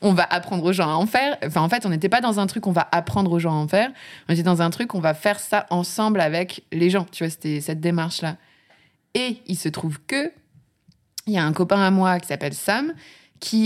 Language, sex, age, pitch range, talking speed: French, female, 20-39, 160-215 Hz, 255 wpm